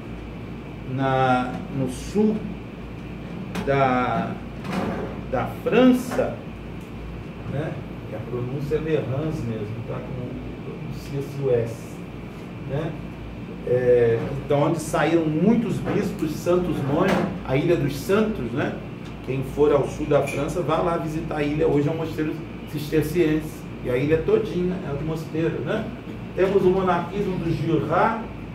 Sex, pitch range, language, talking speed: male, 140-180 Hz, Portuguese, 130 wpm